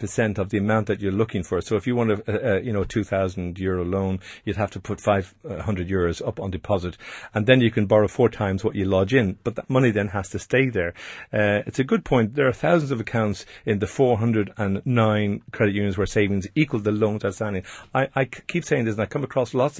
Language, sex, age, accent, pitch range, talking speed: English, male, 50-69, Irish, 100-130 Hz, 240 wpm